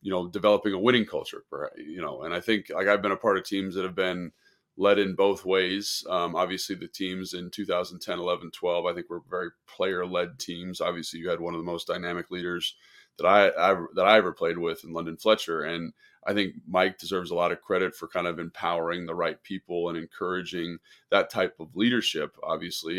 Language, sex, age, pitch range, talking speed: English, male, 20-39, 85-100 Hz, 215 wpm